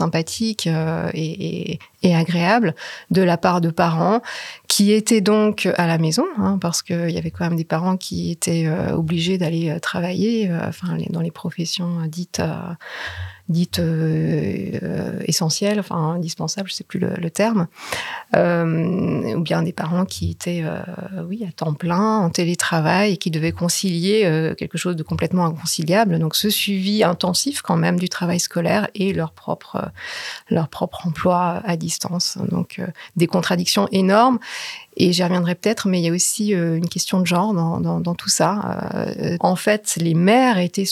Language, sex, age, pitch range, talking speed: French, female, 30-49, 165-195 Hz, 175 wpm